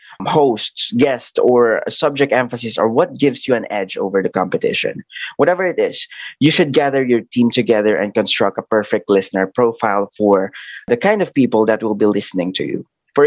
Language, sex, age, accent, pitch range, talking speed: English, male, 20-39, Filipino, 110-140 Hz, 185 wpm